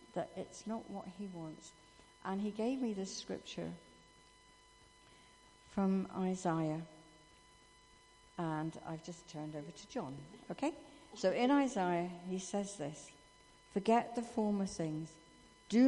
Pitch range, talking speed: 170-210 Hz, 125 wpm